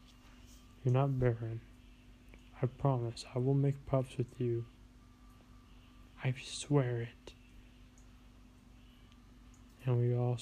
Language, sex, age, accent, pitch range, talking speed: English, male, 20-39, American, 120-145 Hz, 100 wpm